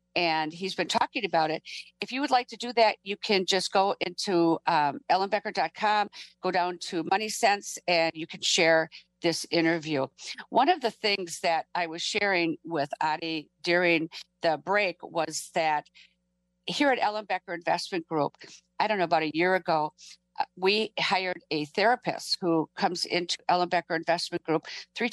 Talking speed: 170 wpm